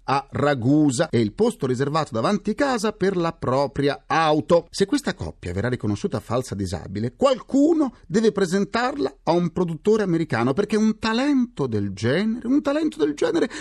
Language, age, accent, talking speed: Italian, 40-59, native, 155 wpm